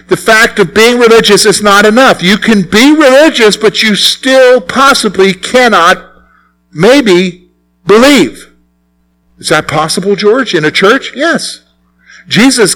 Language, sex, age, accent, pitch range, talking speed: English, male, 50-69, American, 150-215 Hz, 130 wpm